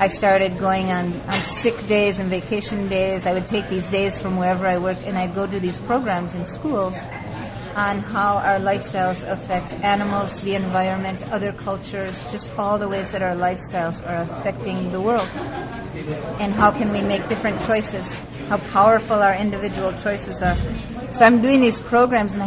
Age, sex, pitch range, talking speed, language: 30-49, female, 185-220 Hz, 180 wpm, English